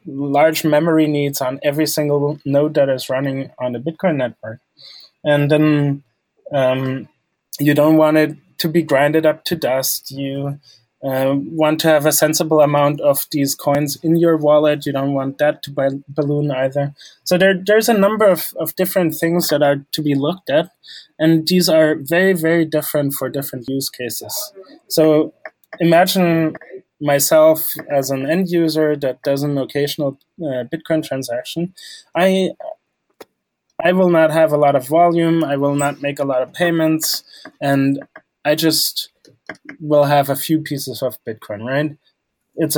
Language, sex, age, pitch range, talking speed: English, male, 20-39, 140-165 Hz, 165 wpm